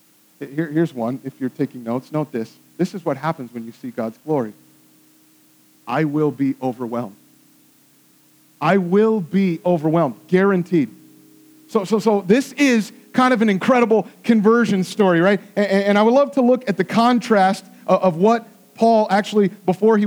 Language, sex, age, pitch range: English, male, 40-59, 175-235 Hz